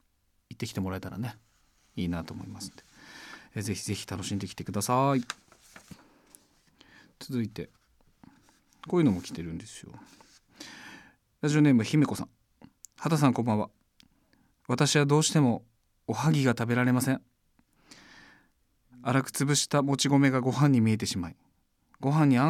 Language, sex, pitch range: Japanese, male, 100-140 Hz